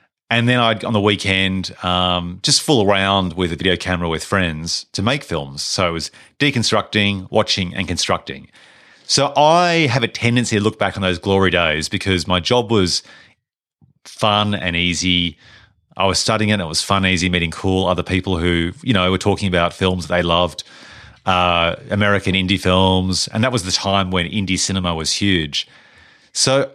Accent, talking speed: Australian, 185 wpm